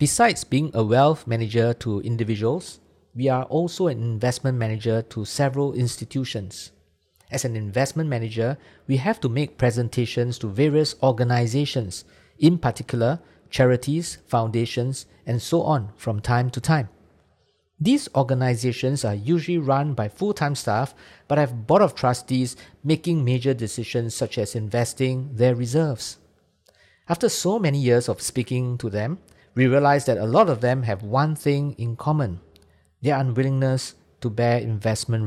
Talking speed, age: 145 wpm, 50-69